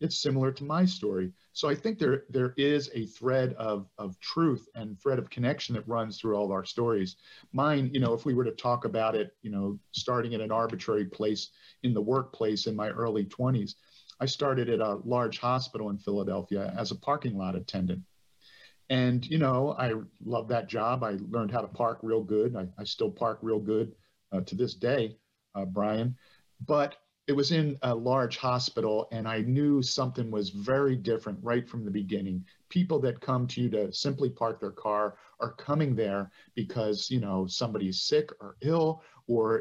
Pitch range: 105-130 Hz